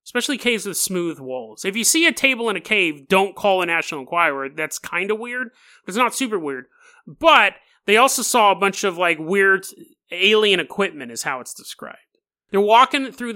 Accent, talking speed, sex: American, 200 wpm, male